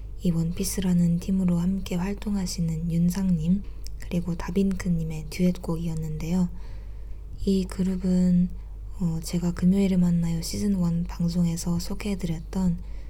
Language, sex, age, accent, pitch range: Korean, female, 20-39, native, 165-185 Hz